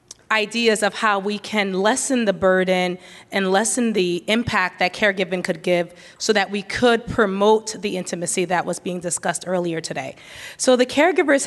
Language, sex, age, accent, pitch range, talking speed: English, female, 20-39, American, 185-220 Hz, 165 wpm